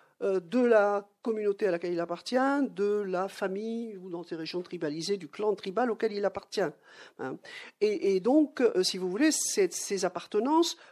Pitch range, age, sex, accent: 195-285 Hz, 50-69, male, French